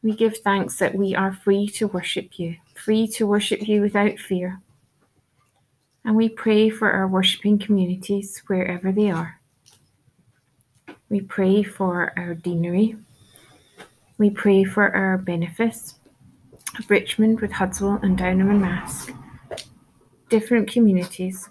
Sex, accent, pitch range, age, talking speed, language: female, British, 175-210 Hz, 30-49, 125 wpm, English